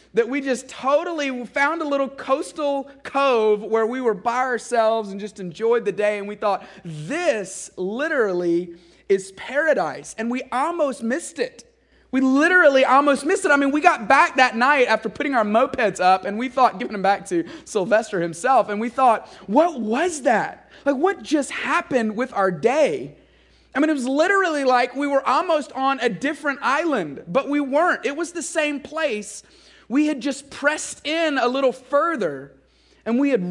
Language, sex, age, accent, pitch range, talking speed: English, male, 30-49, American, 200-285 Hz, 185 wpm